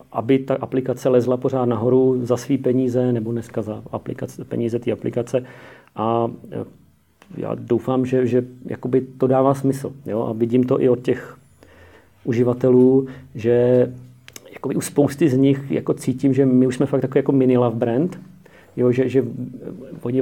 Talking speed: 155 wpm